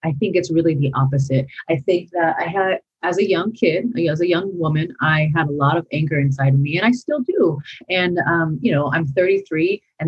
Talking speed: 230 wpm